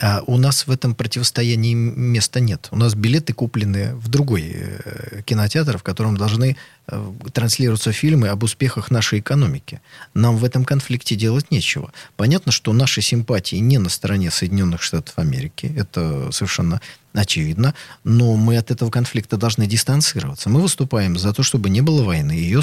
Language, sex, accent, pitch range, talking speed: Russian, male, native, 105-130 Hz, 155 wpm